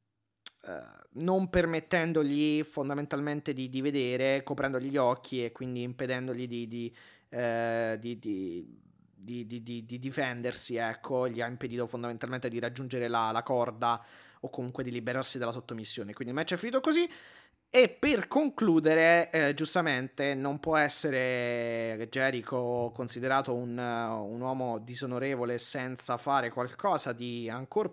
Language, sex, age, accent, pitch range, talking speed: Italian, male, 30-49, native, 120-155 Hz, 140 wpm